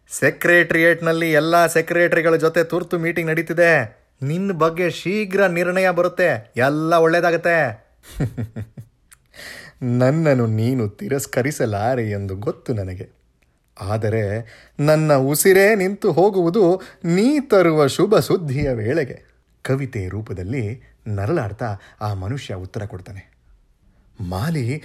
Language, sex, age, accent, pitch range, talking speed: Kannada, male, 30-49, native, 105-170 Hz, 90 wpm